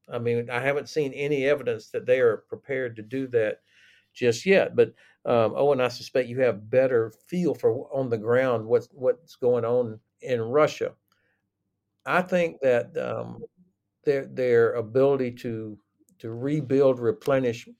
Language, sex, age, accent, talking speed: English, male, 60-79, American, 160 wpm